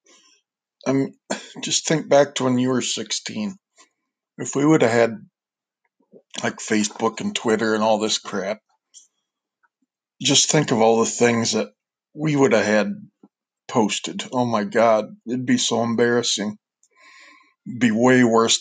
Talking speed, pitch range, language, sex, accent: 145 wpm, 115-135 Hz, English, male, American